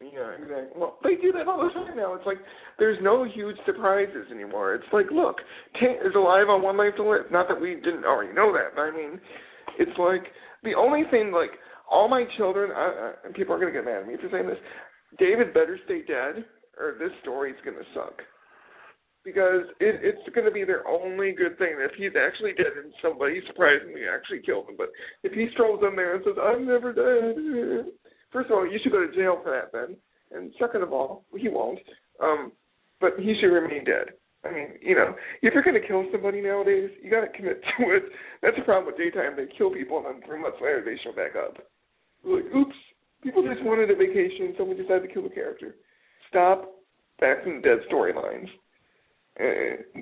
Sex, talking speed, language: male, 215 wpm, English